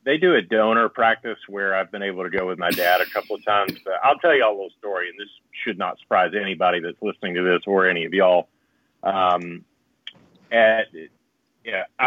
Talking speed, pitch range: 210 wpm, 95-115 Hz